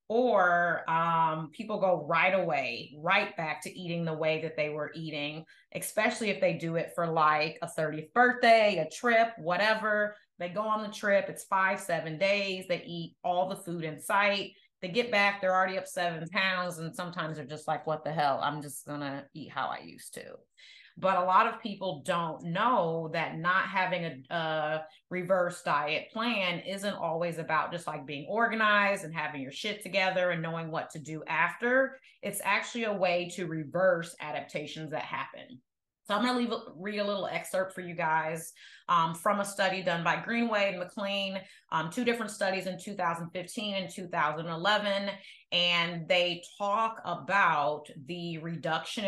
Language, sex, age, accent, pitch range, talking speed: English, female, 30-49, American, 160-200 Hz, 180 wpm